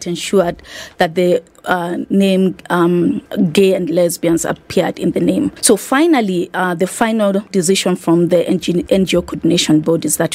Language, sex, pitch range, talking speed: English, female, 170-195 Hz, 150 wpm